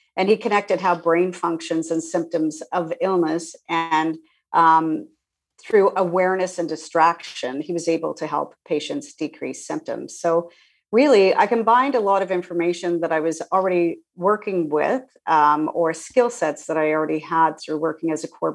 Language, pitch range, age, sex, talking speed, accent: English, 160-190 Hz, 40-59, female, 165 wpm, American